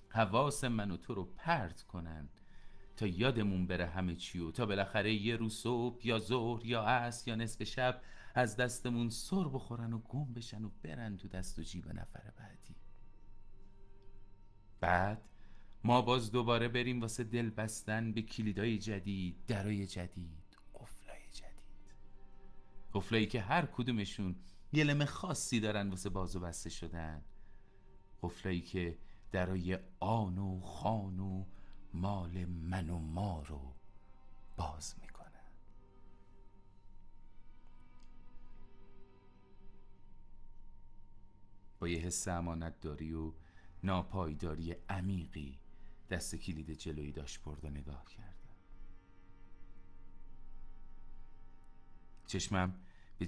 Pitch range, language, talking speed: 90-110 Hz, Persian, 110 wpm